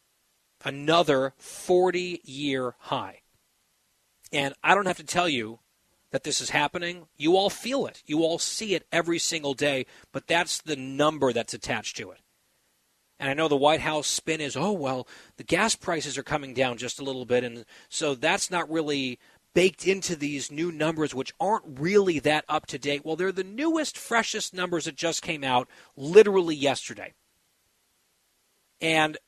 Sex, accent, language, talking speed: male, American, English, 170 wpm